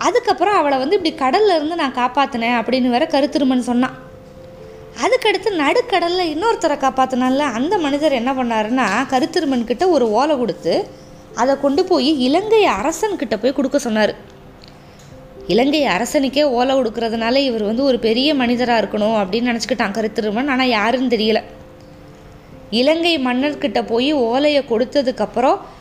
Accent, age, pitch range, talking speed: native, 20-39, 235-305 Hz, 125 wpm